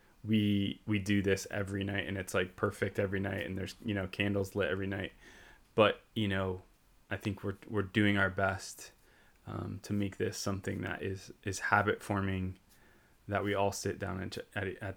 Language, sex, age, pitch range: English, male, 10-29, 95-105 Hz